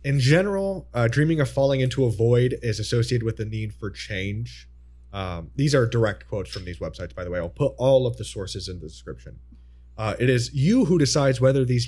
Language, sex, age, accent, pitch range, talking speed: English, male, 30-49, American, 90-125 Hz, 220 wpm